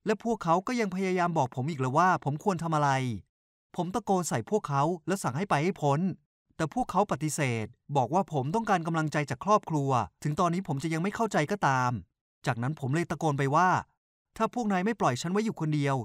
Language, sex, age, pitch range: Thai, male, 20-39, 130-185 Hz